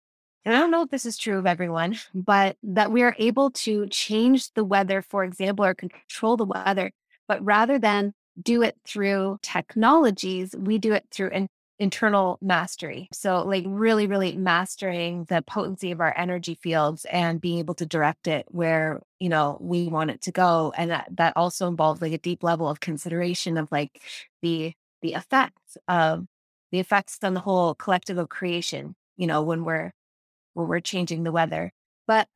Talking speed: 185 wpm